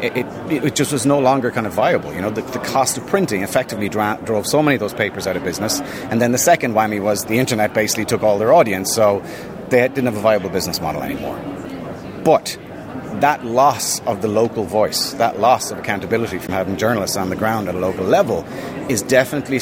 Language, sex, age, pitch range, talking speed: English, male, 30-49, 105-130 Hz, 220 wpm